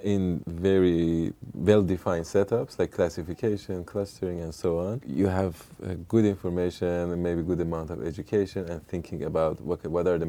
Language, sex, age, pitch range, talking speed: English, male, 30-49, 85-100 Hz, 165 wpm